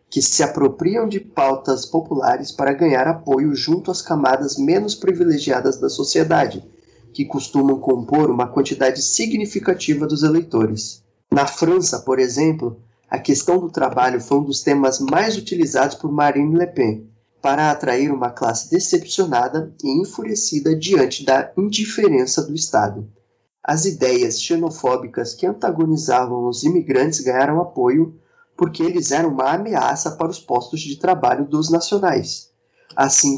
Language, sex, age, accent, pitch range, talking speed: Portuguese, male, 20-39, Brazilian, 130-170 Hz, 135 wpm